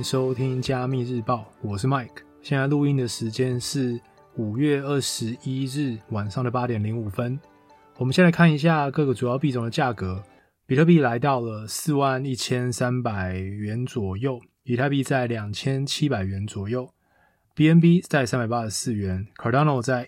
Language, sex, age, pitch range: Chinese, male, 20-39, 115-140 Hz